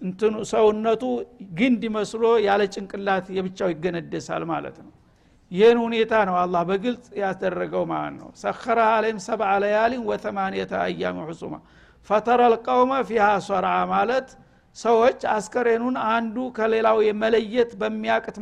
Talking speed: 125 wpm